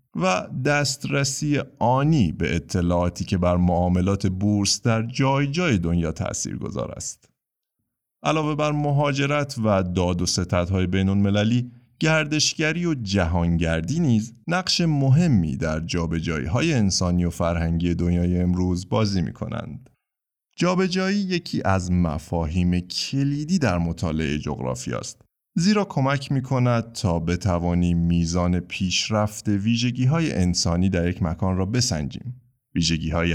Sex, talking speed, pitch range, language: male, 115 wpm, 85-135 Hz, Persian